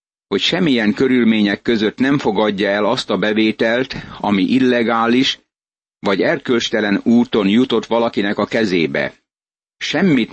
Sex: male